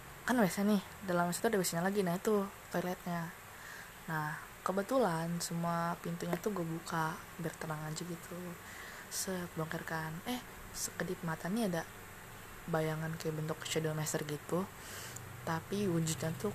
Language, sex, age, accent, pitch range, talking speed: Indonesian, female, 20-39, native, 155-180 Hz, 135 wpm